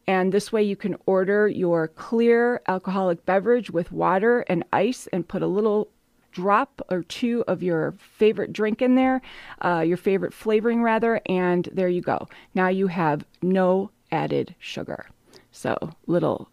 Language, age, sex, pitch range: English, 30-49, female, 180-235 Hz